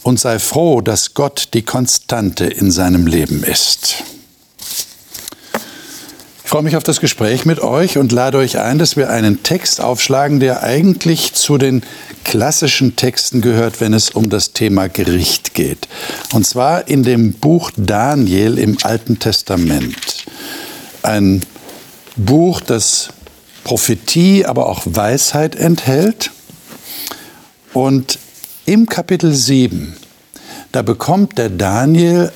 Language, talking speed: German, 125 wpm